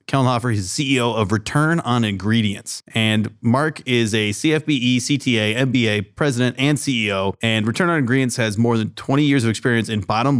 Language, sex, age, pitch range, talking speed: English, male, 30-49, 105-125 Hz, 185 wpm